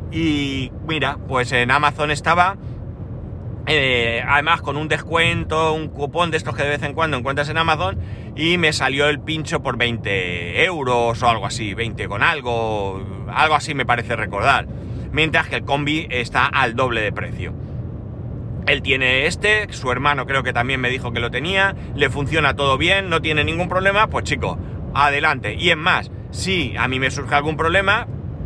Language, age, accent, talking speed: Spanish, 30-49, Spanish, 180 wpm